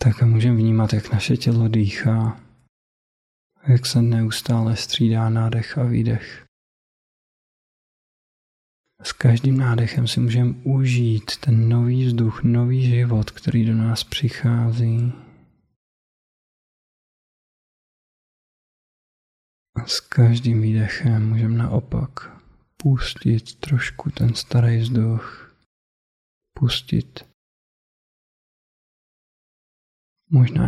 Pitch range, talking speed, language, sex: 110-125 Hz, 85 wpm, Czech, male